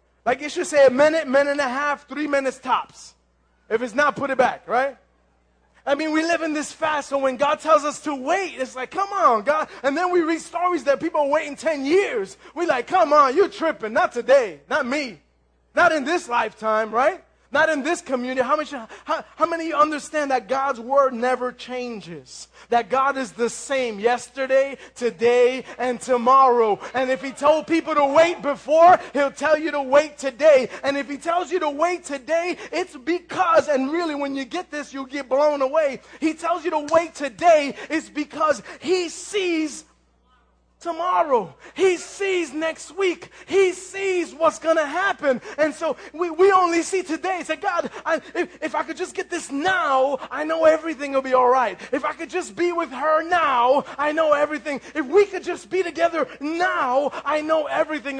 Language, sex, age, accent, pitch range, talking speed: English, male, 20-39, American, 265-330 Hz, 195 wpm